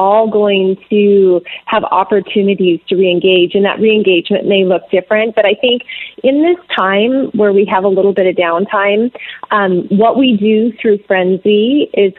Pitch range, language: 185-215 Hz, English